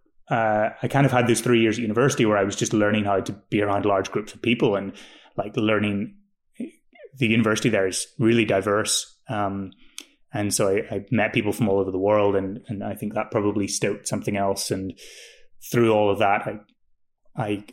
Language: English